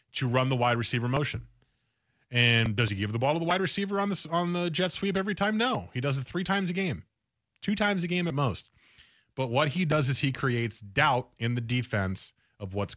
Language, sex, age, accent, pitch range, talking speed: English, male, 30-49, American, 105-145 Hz, 230 wpm